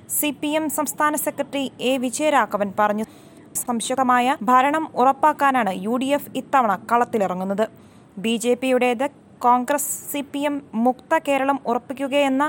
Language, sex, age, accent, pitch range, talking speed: Malayalam, female, 20-39, native, 230-290 Hz, 110 wpm